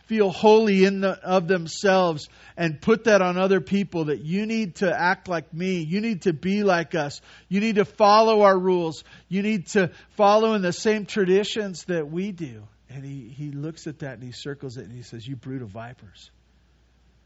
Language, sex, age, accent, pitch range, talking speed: English, male, 50-69, American, 115-180 Hz, 205 wpm